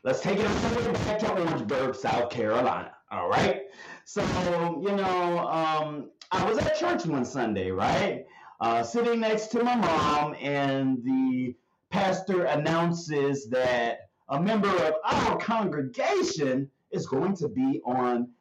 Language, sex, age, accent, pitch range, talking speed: English, male, 30-49, American, 130-215 Hz, 135 wpm